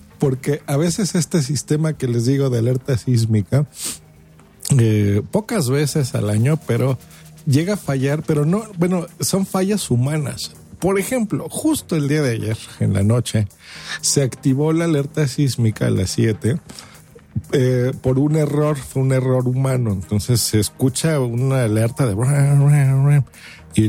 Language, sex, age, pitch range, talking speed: Spanish, male, 50-69, 115-150 Hz, 145 wpm